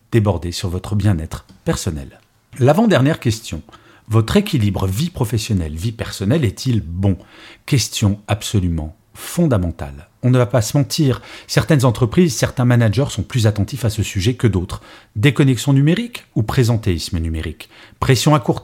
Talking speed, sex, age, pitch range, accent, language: 140 wpm, male, 40-59, 100-130 Hz, French, French